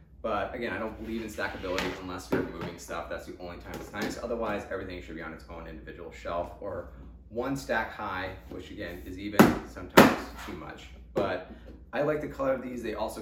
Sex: male